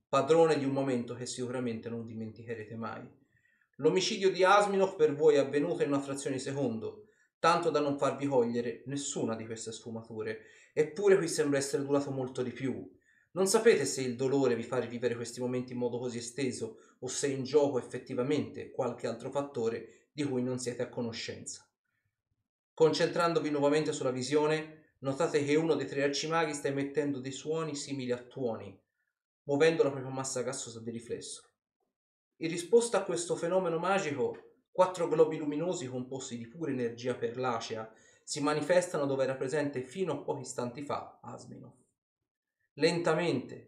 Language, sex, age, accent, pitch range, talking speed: Italian, male, 30-49, native, 125-160 Hz, 160 wpm